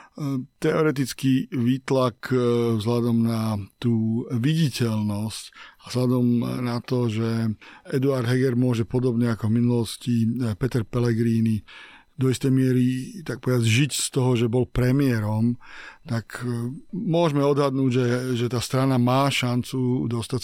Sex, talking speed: male, 120 wpm